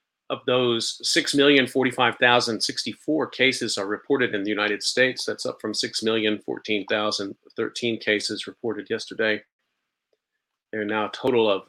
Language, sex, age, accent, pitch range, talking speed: English, male, 40-59, American, 105-125 Hz, 120 wpm